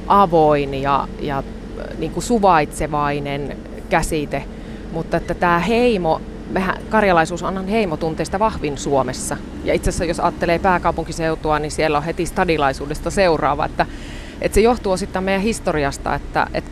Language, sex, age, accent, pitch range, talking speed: Finnish, female, 30-49, native, 155-190 Hz, 135 wpm